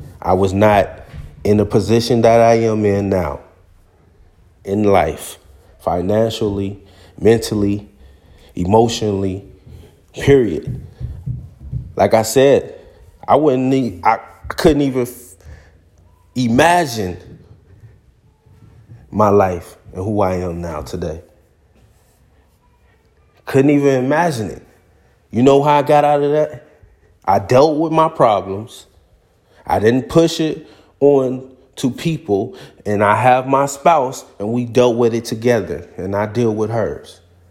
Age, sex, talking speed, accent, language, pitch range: 30-49, male, 120 wpm, American, English, 90-125 Hz